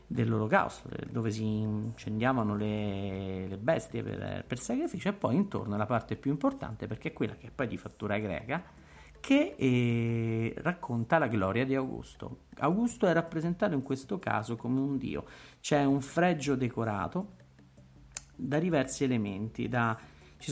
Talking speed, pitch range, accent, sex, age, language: 150 wpm, 110-160 Hz, native, male, 50-69, Italian